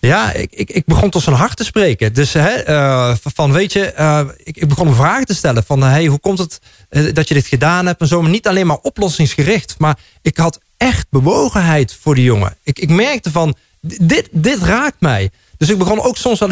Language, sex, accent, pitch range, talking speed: Dutch, male, Dutch, 120-170 Hz, 230 wpm